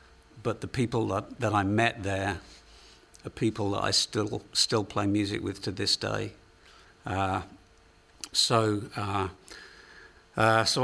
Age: 50-69